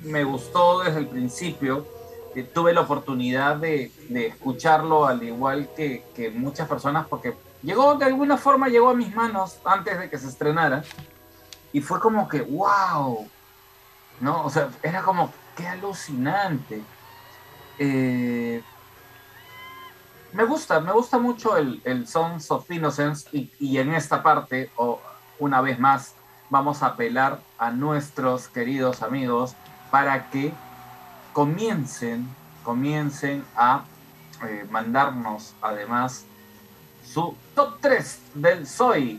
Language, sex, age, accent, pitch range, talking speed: Spanish, male, 30-49, Mexican, 130-170 Hz, 130 wpm